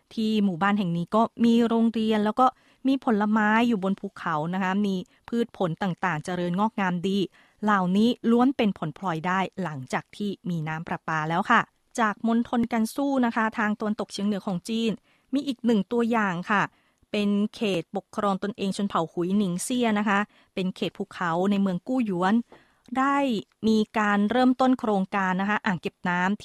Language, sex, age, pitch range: Thai, female, 20-39, 180-230 Hz